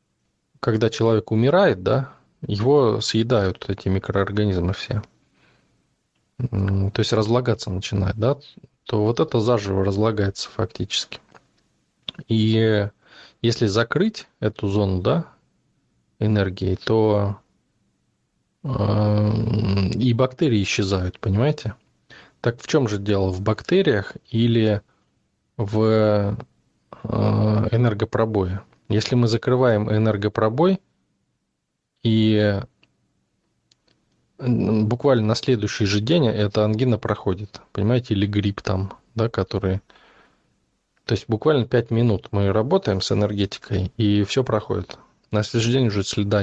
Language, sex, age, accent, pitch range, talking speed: Russian, male, 20-39, native, 100-115 Hz, 105 wpm